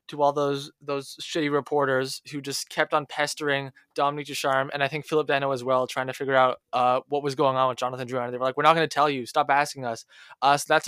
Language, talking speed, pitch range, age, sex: English, 255 wpm, 135-165 Hz, 20-39, male